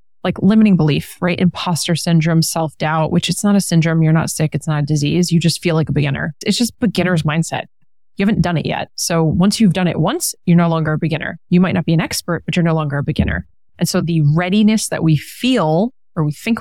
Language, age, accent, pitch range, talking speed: English, 30-49, American, 155-185 Hz, 240 wpm